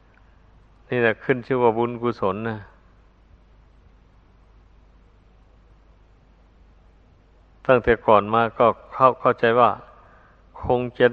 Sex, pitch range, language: male, 95-120 Hz, Thai